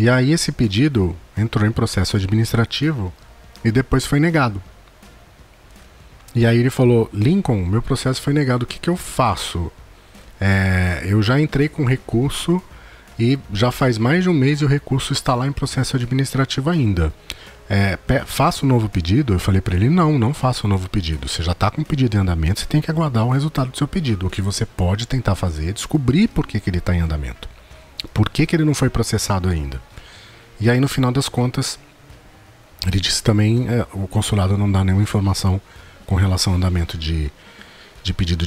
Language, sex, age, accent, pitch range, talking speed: Portuguese, male, 40-59, Brazilian, 95-130 Hz, 200 wpm